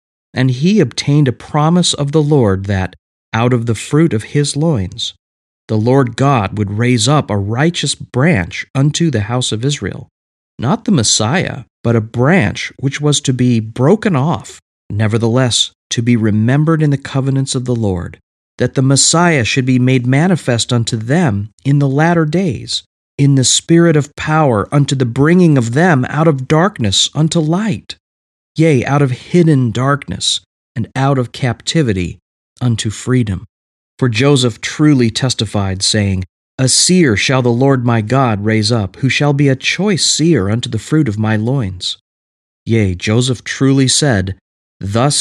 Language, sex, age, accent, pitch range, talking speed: English, male, 40-59, American, 110-145 Hz, 160 wpm